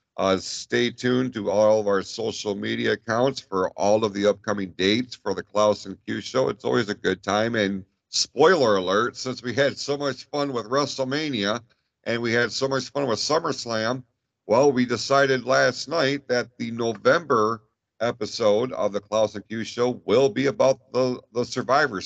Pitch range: 100-130 Hz